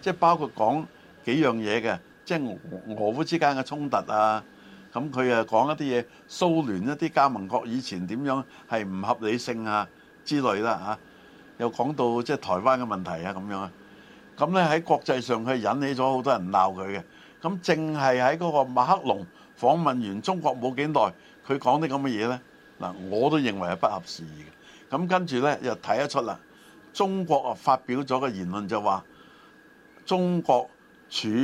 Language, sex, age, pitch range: Chinese, male, 60-79, 110-150 Hz